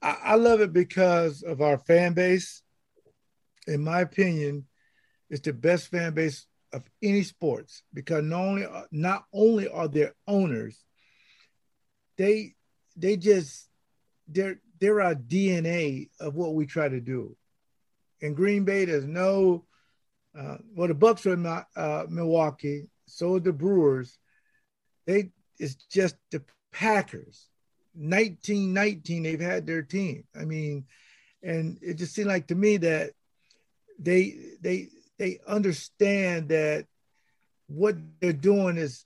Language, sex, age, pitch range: English, male, 50-69, 160-200 Hz